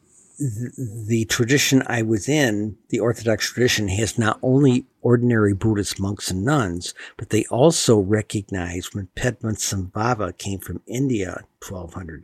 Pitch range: 95-120 Hz